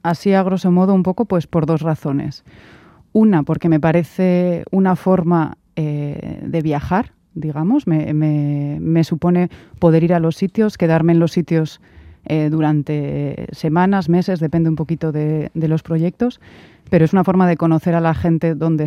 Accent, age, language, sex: Spanish, 30-49, Spanish, female